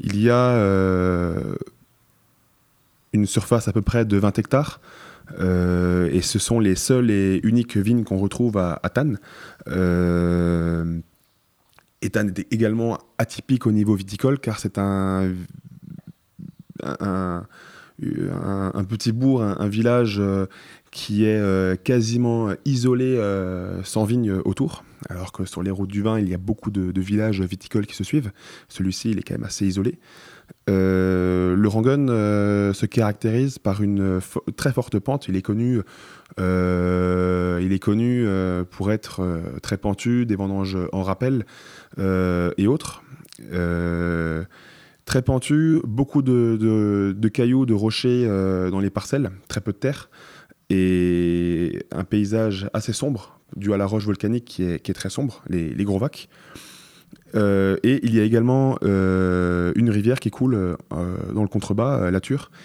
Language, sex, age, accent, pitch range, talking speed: French, male, 20-39, French, 95-115 Hz, 160 wpm